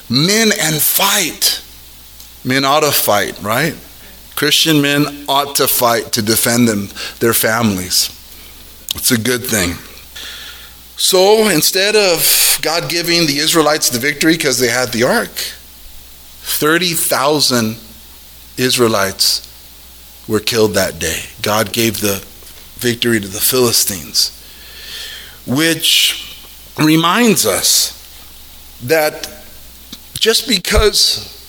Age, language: 30-49, English